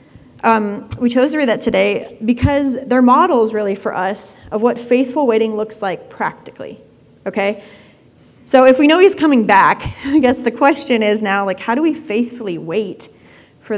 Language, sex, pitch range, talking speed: English, female, 210-260 Hz, 180 wpm